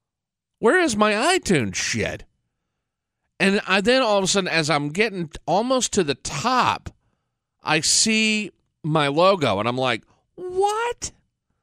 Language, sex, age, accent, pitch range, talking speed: English, male, 40-59, American, 115-165 Hz, 140 wpm